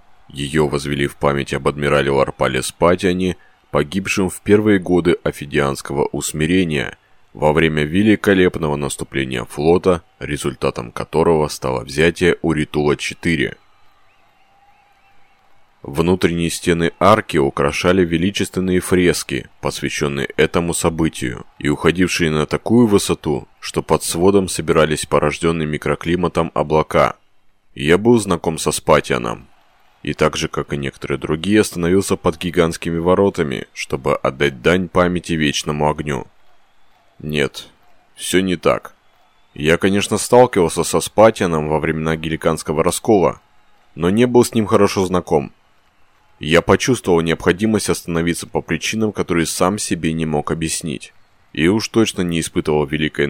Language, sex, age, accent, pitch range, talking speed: Russian, male, 20-39, native, 75-95 Hz, 120 wpm